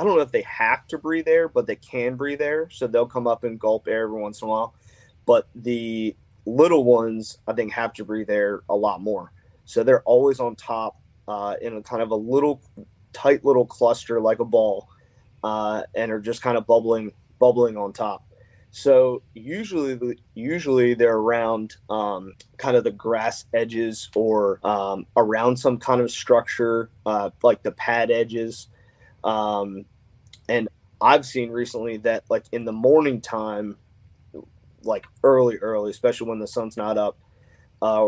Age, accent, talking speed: 20-39, American, 175 wpm